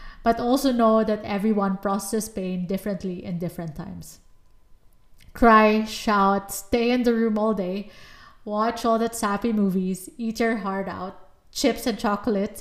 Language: English